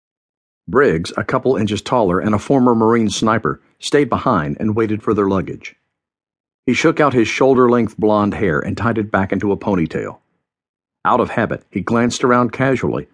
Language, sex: English, male